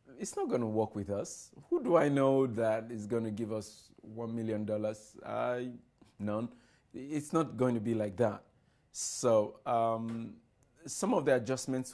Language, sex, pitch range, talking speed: English, male, 105-130 Hz, 180 wpm